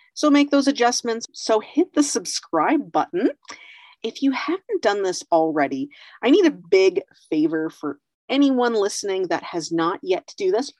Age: 40-59